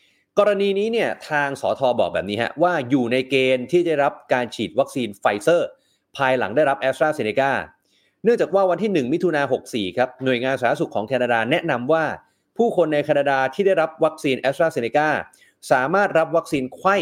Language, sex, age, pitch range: Thai, male, 30-49, 120-160 Hz